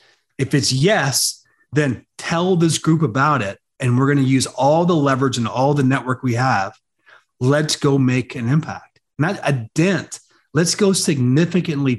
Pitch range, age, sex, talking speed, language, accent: 125-175 Hz, 40-59, male, 170 wpm, English, American